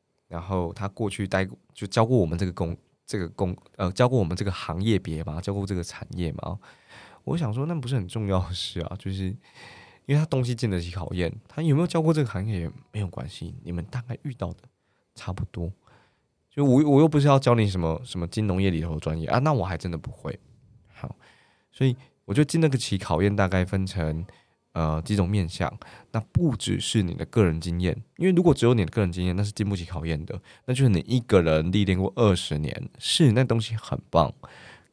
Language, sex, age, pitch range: Chinese, male, 20-39, 90-120 Hz